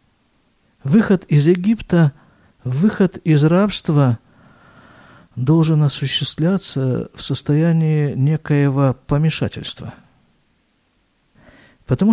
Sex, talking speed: male, 65 wpm